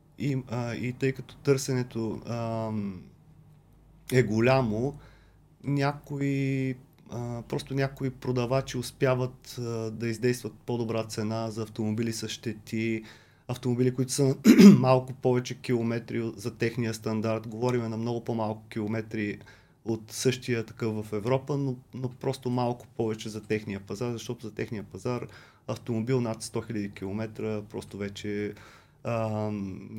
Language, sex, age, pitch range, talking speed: Bulgarian, male, 30-49, 110-135 Hz, 125 wpm